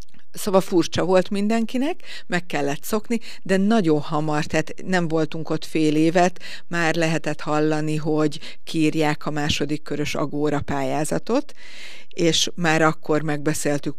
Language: Hungarian